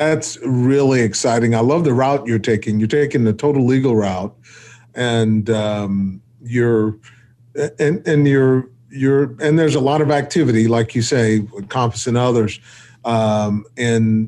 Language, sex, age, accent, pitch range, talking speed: English, male, 40-59, American, 115-130 Hz, 155 wpm